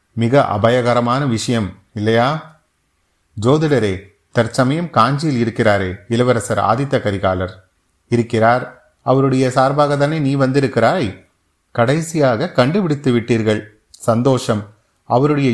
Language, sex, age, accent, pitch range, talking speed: Tamil, male, 30-49, native, 105-140 Hz, 80 wpm